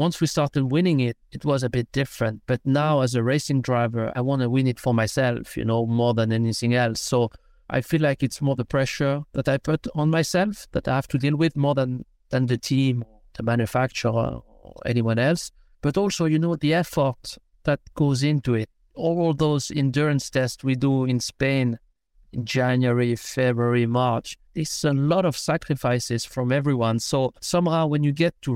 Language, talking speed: English, 195 wpm